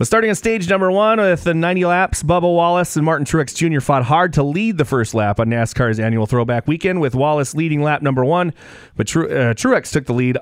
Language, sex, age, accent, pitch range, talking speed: English, male, 30-49, American, 120-155 Hz, 240 wpm